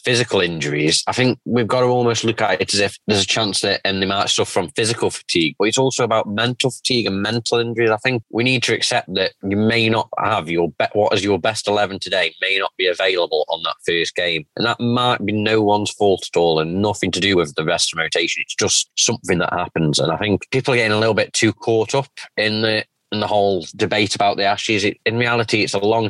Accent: British